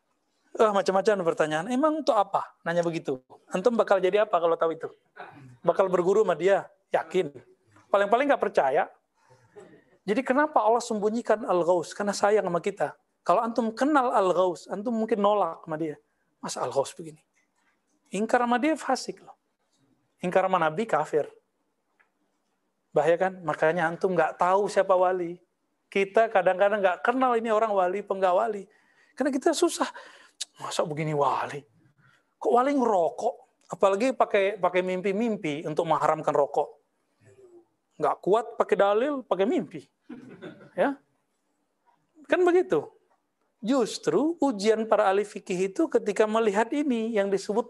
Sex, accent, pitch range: male, native, 180-230 Hz